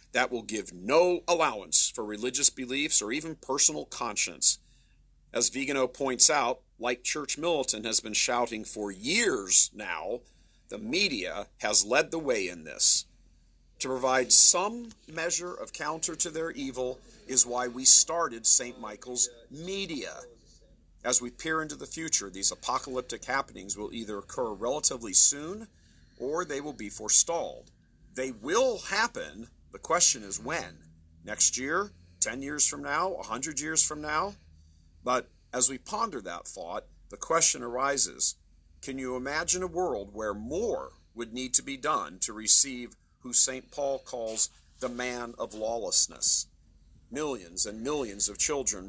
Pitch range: 105-140 Hz